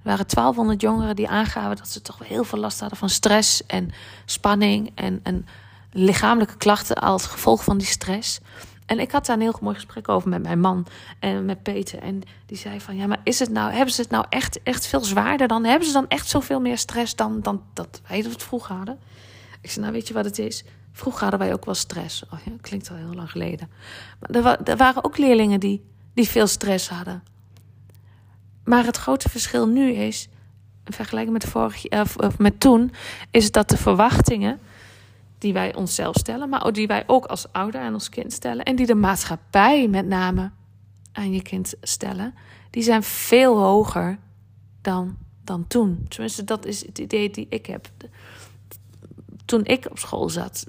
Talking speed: 200 wpm